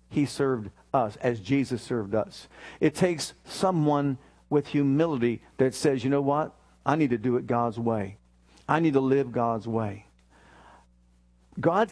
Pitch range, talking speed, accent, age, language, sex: 115-155 Hz, 155 wpm, American, 50-69, English, male